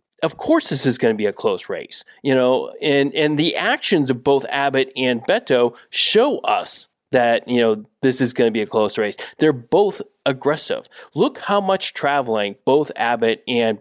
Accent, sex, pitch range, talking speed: American, male, 120-180 Hz, 190 wpm